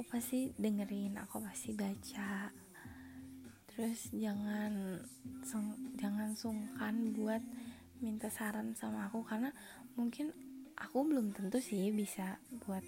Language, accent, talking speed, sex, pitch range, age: Indonesian, native, 105 wpm, female, 205-250 Hz, 20-39